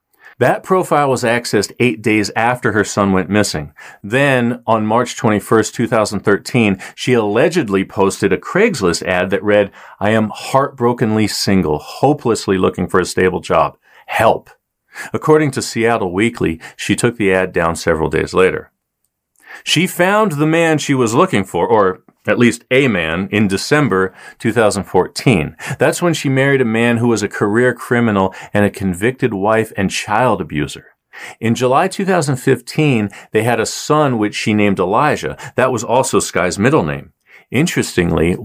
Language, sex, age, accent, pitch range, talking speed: English, male, 40-59, American, 100-135 Hz, 155 wpm